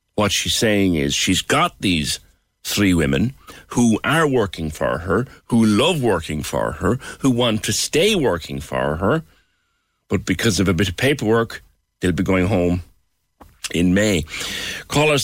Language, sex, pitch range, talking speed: English, male, 85-115 Hz, 160 wpm